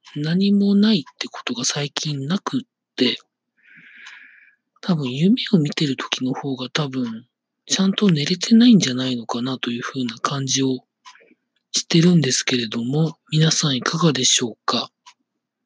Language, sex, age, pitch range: Japanese, male, 40-59, 140-205 Hz